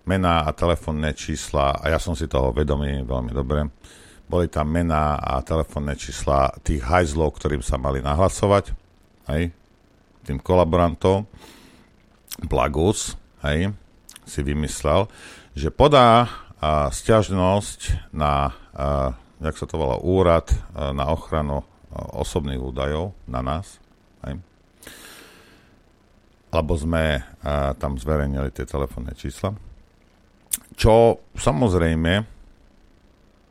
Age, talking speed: 50-69, 105 wpm